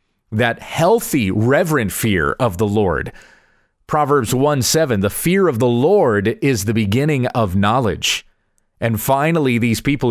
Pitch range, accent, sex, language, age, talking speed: 115-155 Hz, American, male, English, 40-59, 140 wpm